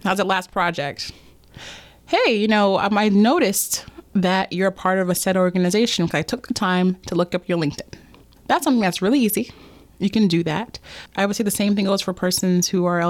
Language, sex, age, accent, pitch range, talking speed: English, female, 20-39, American, 180-255 Hz, 220 wpm